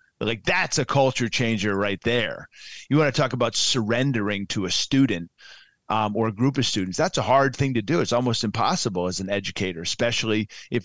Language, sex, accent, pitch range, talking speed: English, male, American, 110-145 Hz, 200 wpm